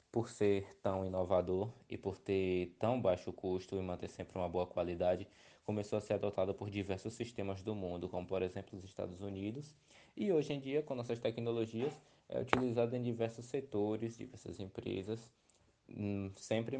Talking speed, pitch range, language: 165 wpm, 95-115 Hz, Portuguese